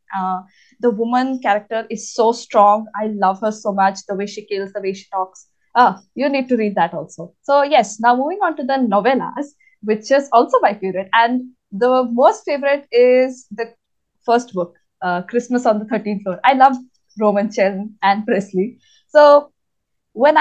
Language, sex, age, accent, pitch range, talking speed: English, female, 20-39, Indian, 205-275 Hz, 180 wpm